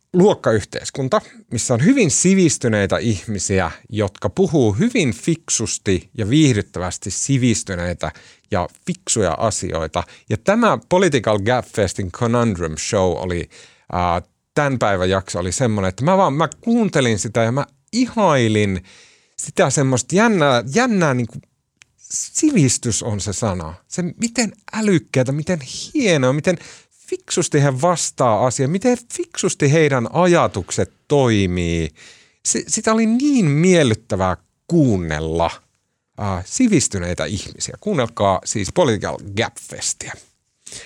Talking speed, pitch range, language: 105 wpm, 100-165 Hz, Finnish